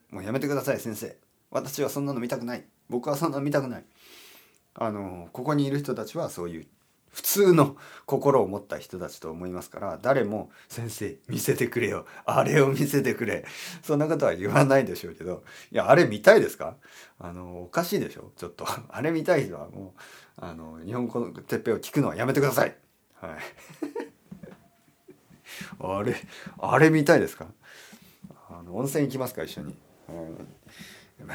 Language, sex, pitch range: Japanese, male, 95-155 Hz